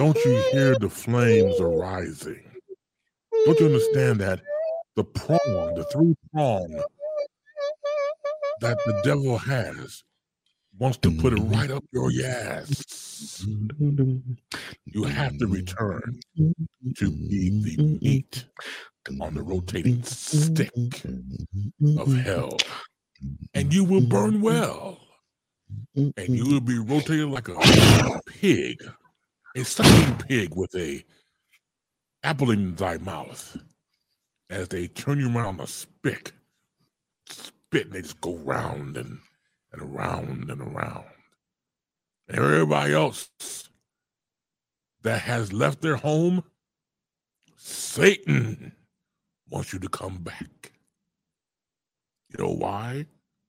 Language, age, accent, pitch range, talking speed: English, 60-79, American, 105-150 Hz, 110 wpm